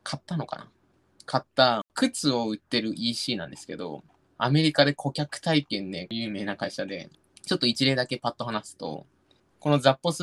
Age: 20-39